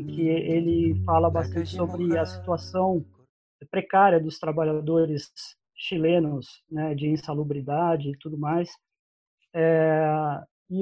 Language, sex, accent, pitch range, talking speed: Portuguese, male, Brazilian, 160-205 Hz, 110 wpm